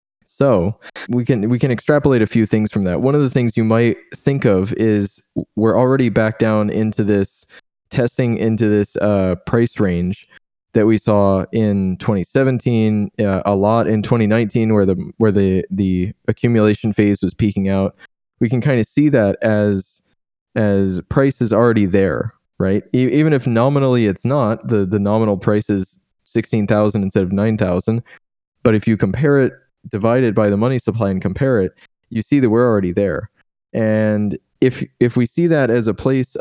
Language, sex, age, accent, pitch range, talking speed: English, male, 20-39, American, 100-120 Hz, 175 wpm